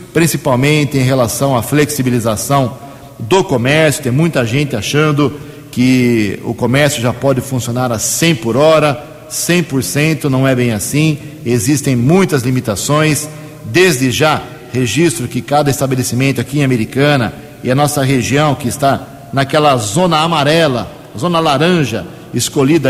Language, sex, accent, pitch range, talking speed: Portuguese, male, Brazilian, 130-155 Hz, 130 wpm